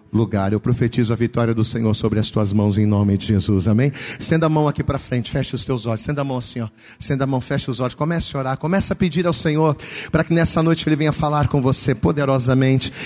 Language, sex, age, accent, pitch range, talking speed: Portuguese, male, 40-59, Brazilian, 170-225 Hz, 255 wpm